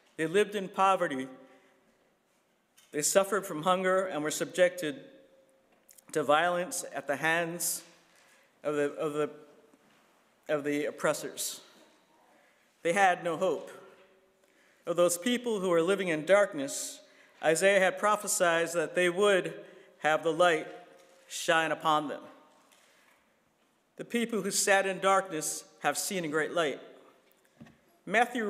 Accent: American